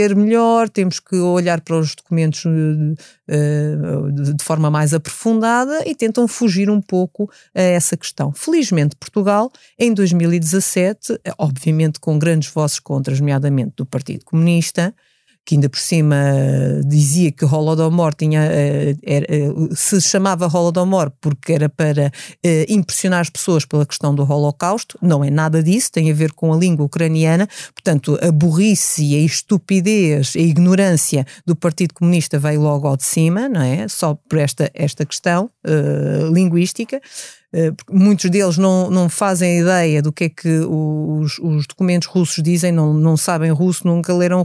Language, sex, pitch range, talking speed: Portuguese, female, 155-190 Hz, 150 wpm